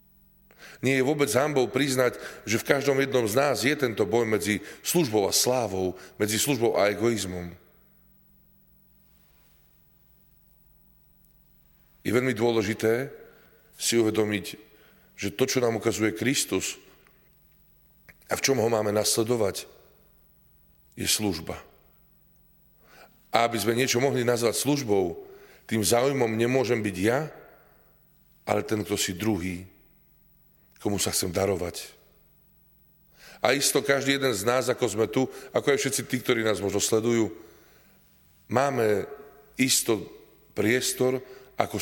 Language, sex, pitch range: Slovak, male, 105-150 Hz